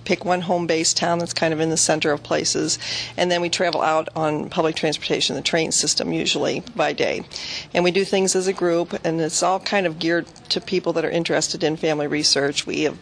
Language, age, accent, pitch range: English, 40-59, American, 155-175 Hz